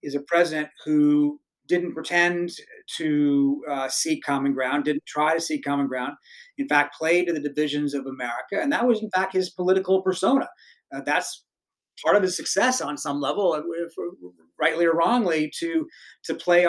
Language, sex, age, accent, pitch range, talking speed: English, male, 40-59, American, 150-200 Hz, 175 wpm